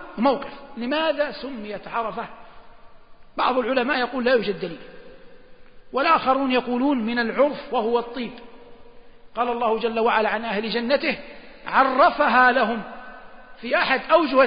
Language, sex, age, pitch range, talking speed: Arabic, male, 50-69, 240-285 Hz, 115 wpm